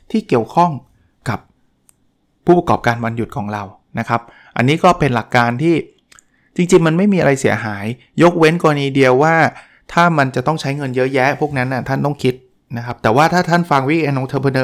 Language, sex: Thai, male